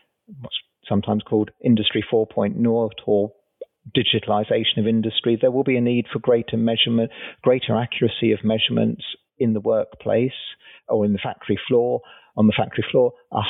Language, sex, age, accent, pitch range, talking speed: English, male, 40-59, British, 110-125 Hz, 150 wpm